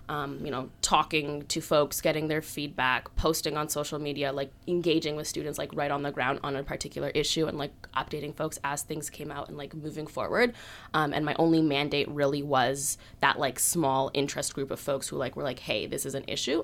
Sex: female